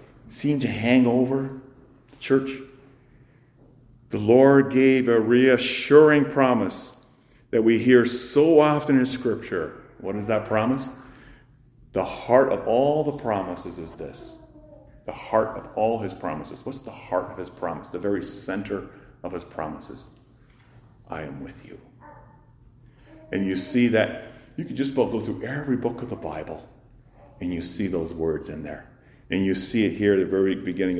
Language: English